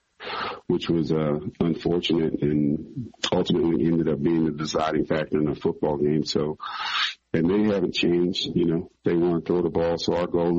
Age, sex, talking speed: 40-59, male, 180 wpm